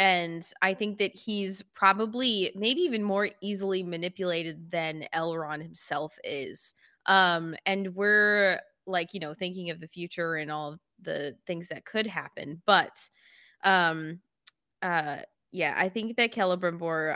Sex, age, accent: female, 20-39, American